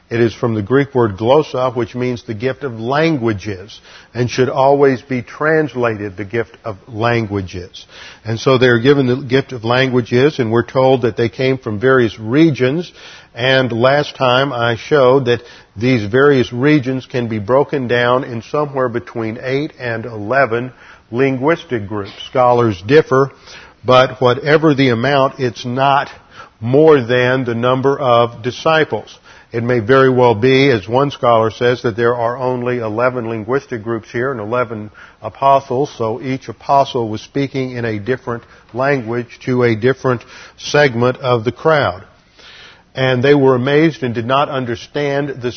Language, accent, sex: English, American, male